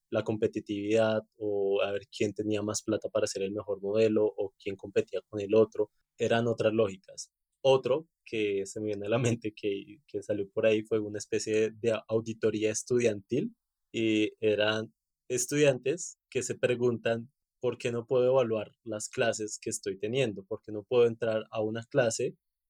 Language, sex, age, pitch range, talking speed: Spanish, male, 20-39, 105-125 Hz, 175 wpm